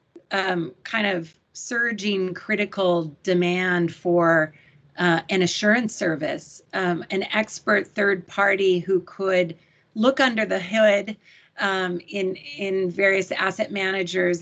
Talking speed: 115 wpm